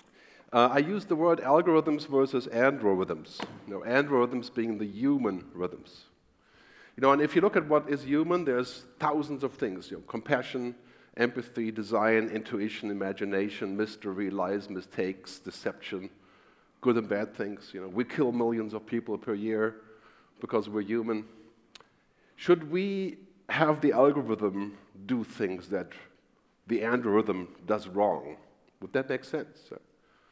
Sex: male